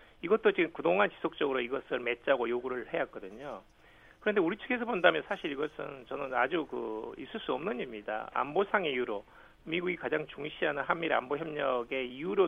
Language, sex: Korean, male